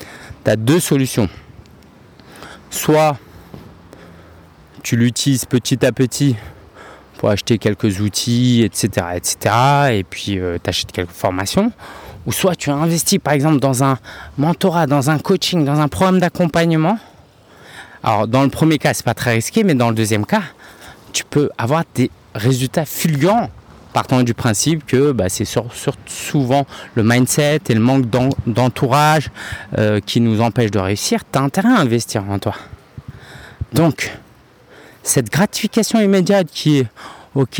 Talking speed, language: 155 wpm, French